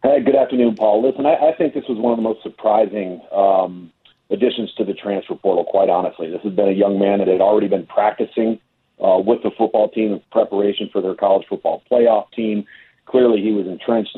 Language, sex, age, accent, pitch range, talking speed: English, male, 40-59, American, 105-125 Hz, 215 wpm